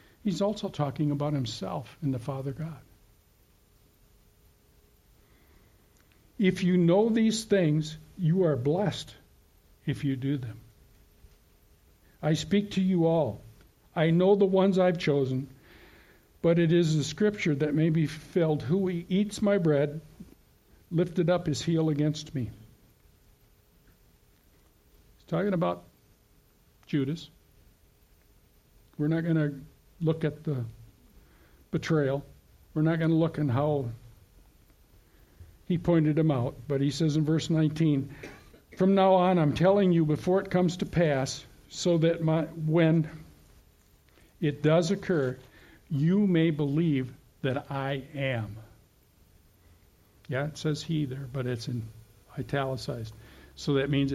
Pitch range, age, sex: 125-165 Hz, 60-79, male